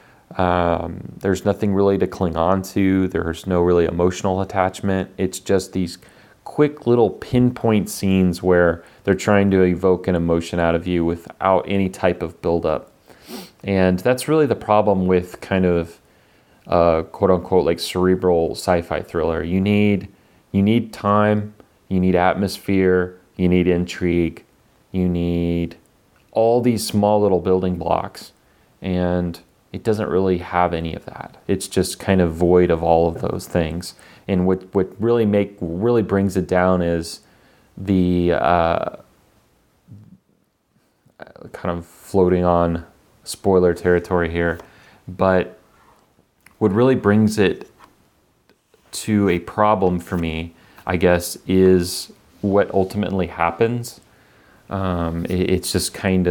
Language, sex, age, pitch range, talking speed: English, male, 30-49, 85-100 Hz, 135 wpm